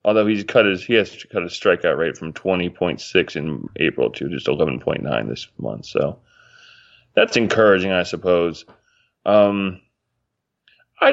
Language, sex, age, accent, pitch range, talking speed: English, male, 20-39, American, 90-115 Hz, 130 wpm